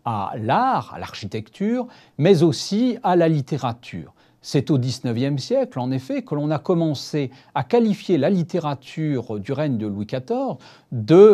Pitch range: 130-180 Hz